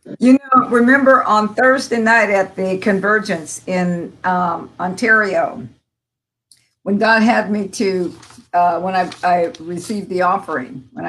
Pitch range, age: 175-210 Hz, 50-69